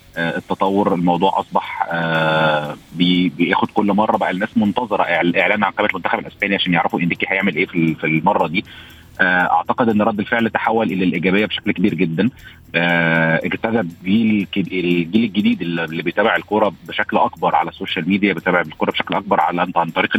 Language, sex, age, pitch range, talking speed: Arabic, male, 30-49, 85-95 Hz, 150 wpm